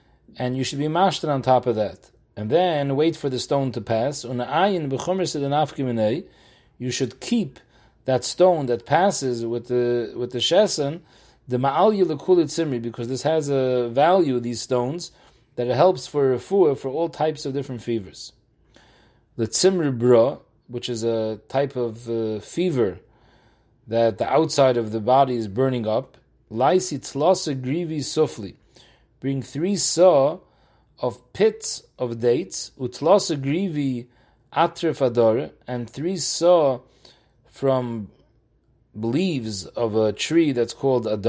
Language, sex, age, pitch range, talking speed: English, male, 30-49, 120-155 Hz, 135 wpm